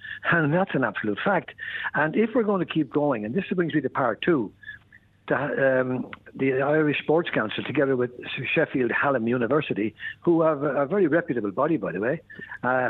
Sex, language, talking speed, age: male, English, 185 wpm, 60-79